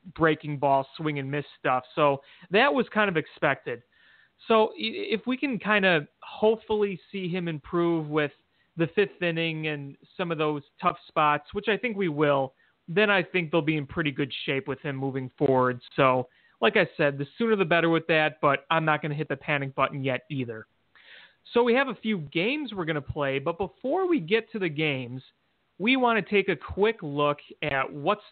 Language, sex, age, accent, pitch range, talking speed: English, male, 30-49, American, 145-200 Hz, 205 wpm